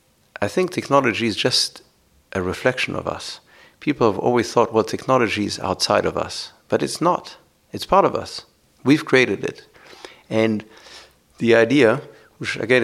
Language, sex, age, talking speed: English, male, 60-79, 160 wpm